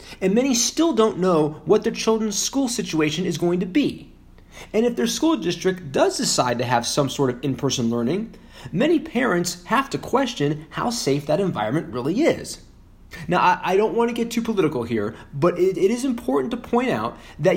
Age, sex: 30-49, male